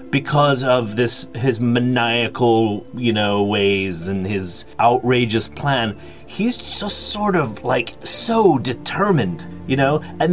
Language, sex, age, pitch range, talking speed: English, male, 30-49, 110-165 Hz, 130 wpm